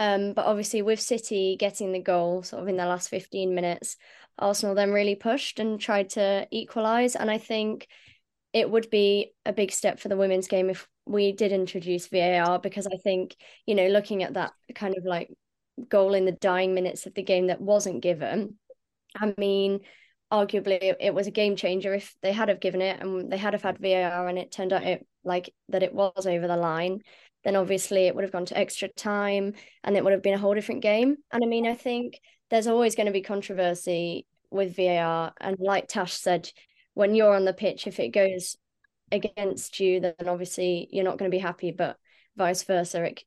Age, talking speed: 20-39, 210 wpm